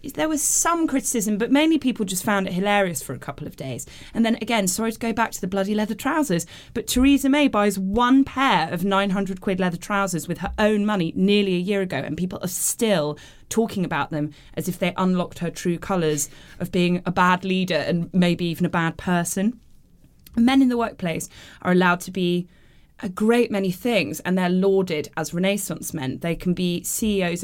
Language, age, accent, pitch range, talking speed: English, 20-39, British, 165-200 Hz, 205 wpm